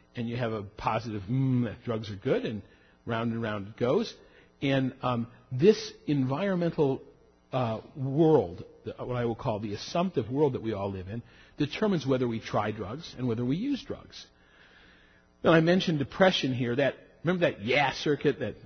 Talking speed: 175 wpm